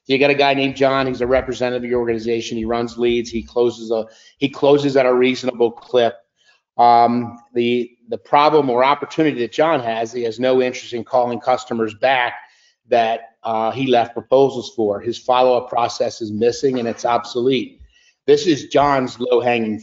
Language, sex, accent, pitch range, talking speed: English, male, American, 115-135 Hz, 180 wpm